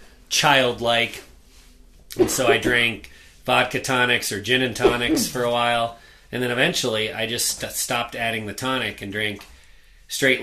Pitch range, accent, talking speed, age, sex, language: 100-130 Hz, American, 150 wpm, 30-49, male, English